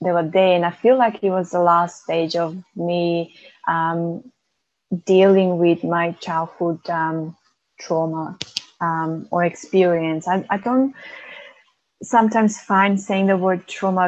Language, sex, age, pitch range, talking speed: English, female, 20-39, 170-195 Hz, 135 wpm